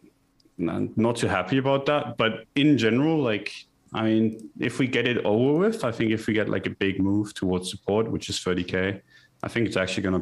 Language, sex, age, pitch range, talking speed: English, male, 20-39, 90-110 Hz, 215 wpm